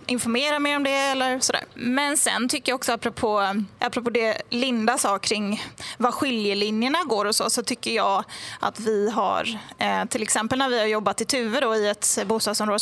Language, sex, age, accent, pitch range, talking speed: English, female, 20-39, Swedish, 210-250 Hz, 185 wpm